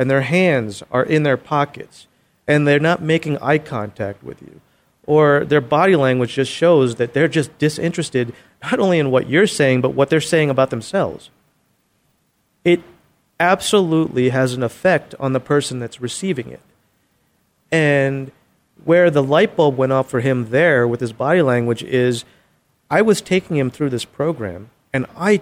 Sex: male